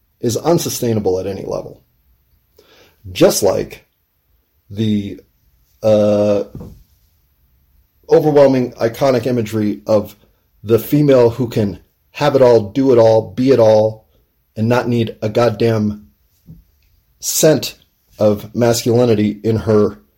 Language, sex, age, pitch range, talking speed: English, male, 30-49, 95-120 Hz, 105 wpm